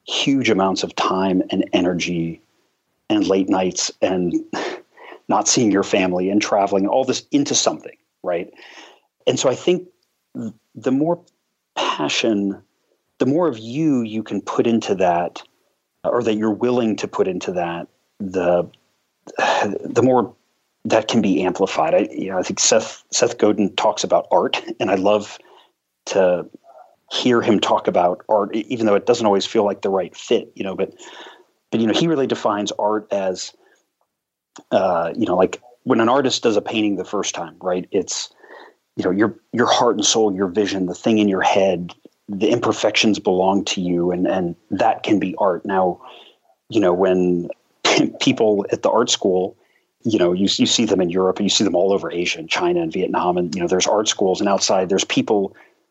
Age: 40-59